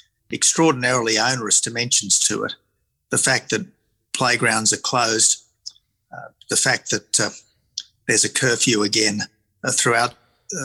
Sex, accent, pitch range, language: male, Australian, 115-135 Hz, English